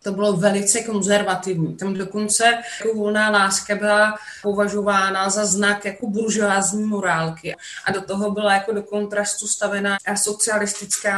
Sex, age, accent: female, 30-49, native